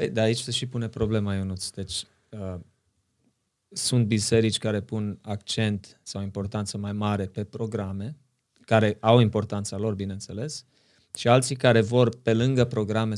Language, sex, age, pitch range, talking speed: Romanian, male, 20-39, 100-115 Hz, 145 wpm